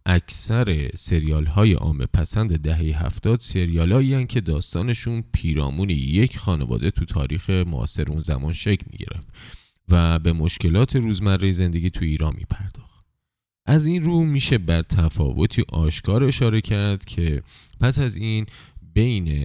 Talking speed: 135 wpm